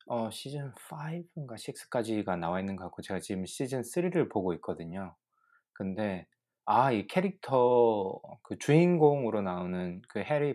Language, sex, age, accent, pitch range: Korean, male, 20-39, native, 90-125 Hz